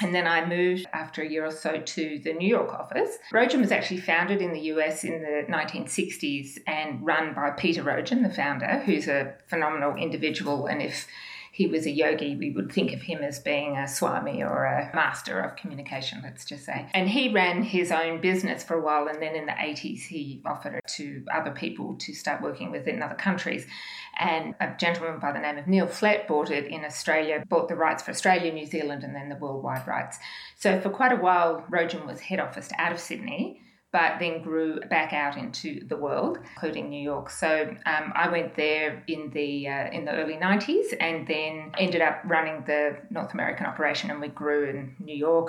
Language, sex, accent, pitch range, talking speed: English, female, Australian, 150-185 Hz, 210 wpm